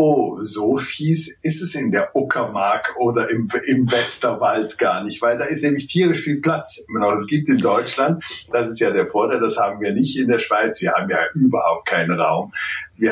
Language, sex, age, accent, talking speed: German, male, 60-79, German, 195 wpm